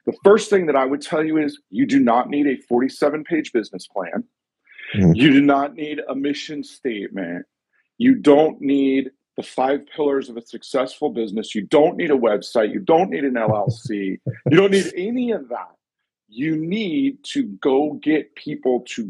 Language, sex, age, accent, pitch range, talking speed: English, male, 50-69, American, 130-185 Hz, 180 wpm